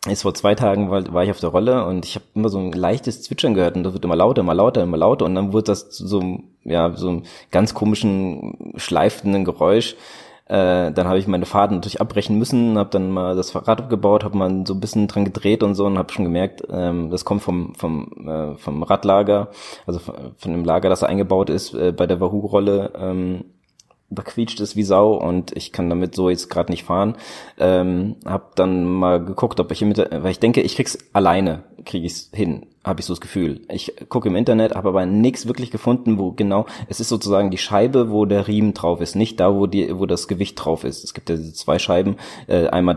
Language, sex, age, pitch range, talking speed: German, male, 20-39, 90-100 Hz, 230 wpm